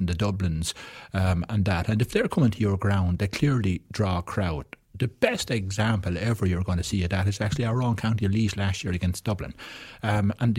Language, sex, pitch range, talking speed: English, male, 95-120 Hz, 225 wpm